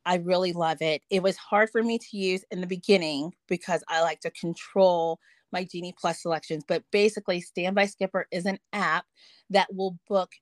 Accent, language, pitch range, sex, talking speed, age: American, English, 170-205 Hz, female, 190 wpm, 30-49